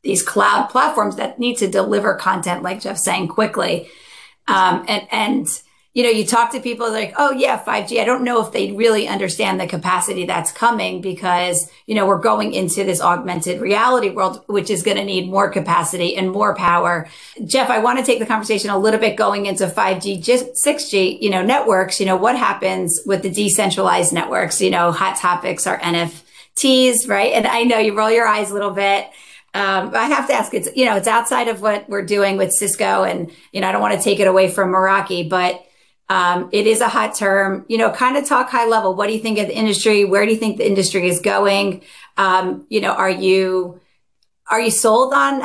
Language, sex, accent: English, female, American